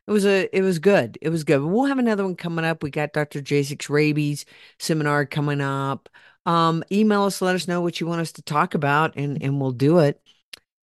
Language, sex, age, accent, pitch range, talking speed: English, female, 50-69, American, 135-175 Hz, 225 wpm